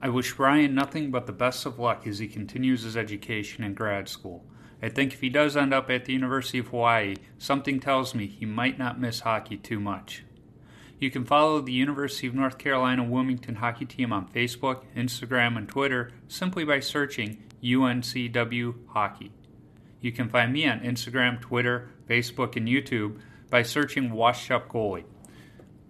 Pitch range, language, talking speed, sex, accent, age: 120-135 Hz, English, 170 wpm, male, American, 30-49